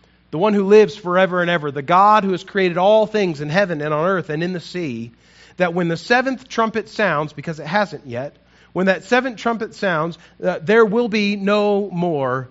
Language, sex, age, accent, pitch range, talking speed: English, male, 40-59, American, 130-190 Hz, 210 wpm